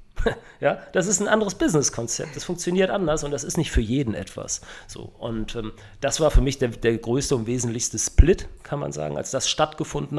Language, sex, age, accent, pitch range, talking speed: German, male, 40-59, German, 110-140 Hz, 205 wpm